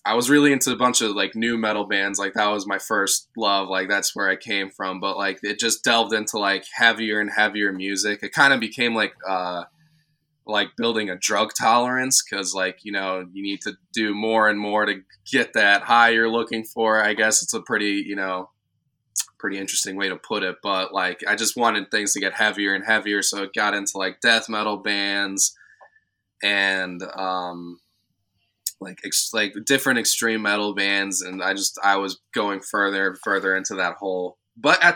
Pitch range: 100-115 Hz